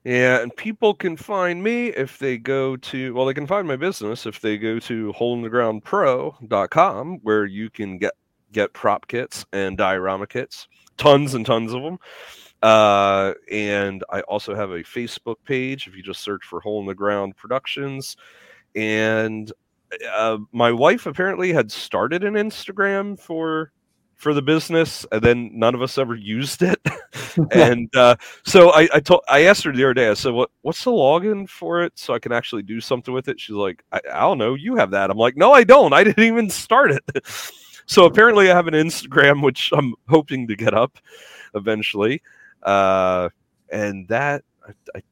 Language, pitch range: English, 105-160 Hz